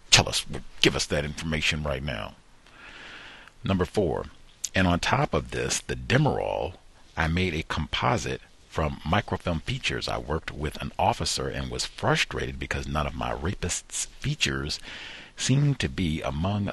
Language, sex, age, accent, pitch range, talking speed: English, male, 50-69, American, 75-95 Hz, 150 wpm